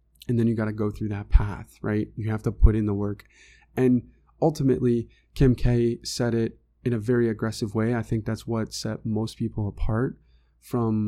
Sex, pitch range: male, 105-125 Hz